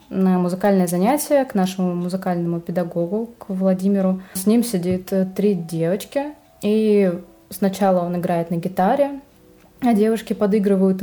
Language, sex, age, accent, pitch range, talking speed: Russian, female, 20-39, native, 180-210 Hz, 125 wpm